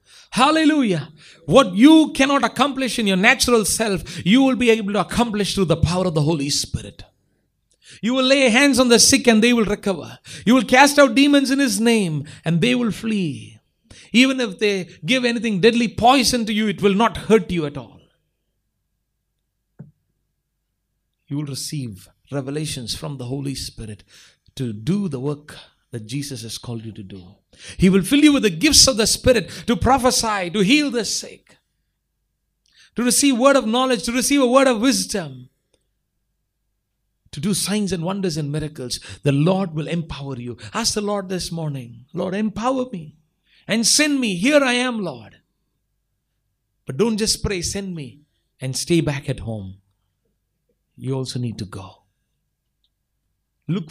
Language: English